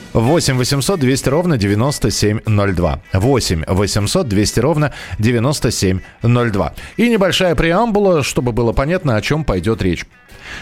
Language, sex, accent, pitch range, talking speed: Russian, male, native, 110-160 Hz, 105 wpm